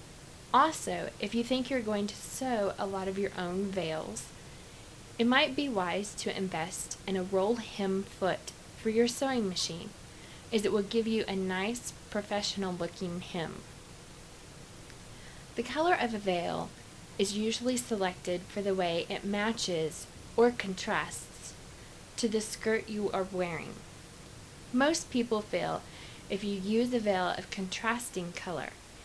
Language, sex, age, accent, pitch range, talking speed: English, female, 20-39, American, 190-235 Hz, 145 wpm